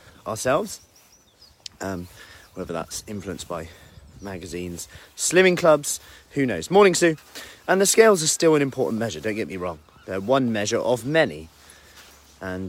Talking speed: 145 wpm